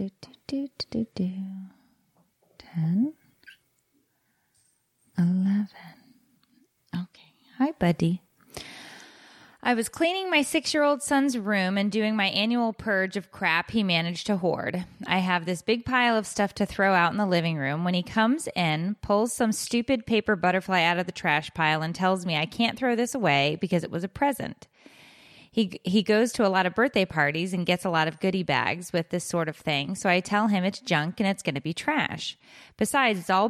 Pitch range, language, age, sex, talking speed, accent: 175-225 Hz, English, 20-39, female, 195 wpm, American